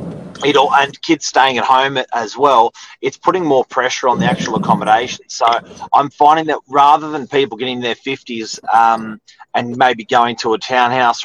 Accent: Australian